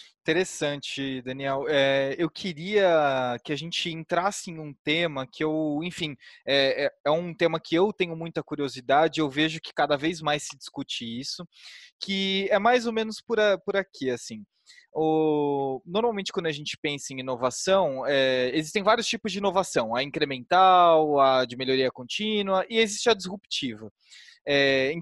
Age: 20-39